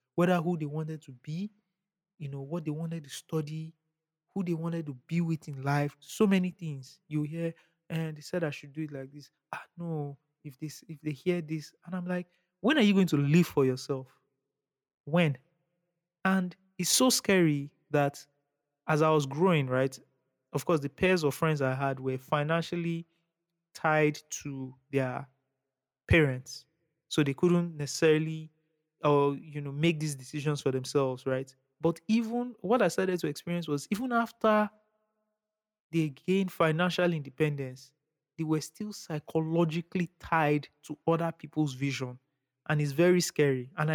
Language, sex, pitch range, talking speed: English, male, 145-175 Hz, 160 wpm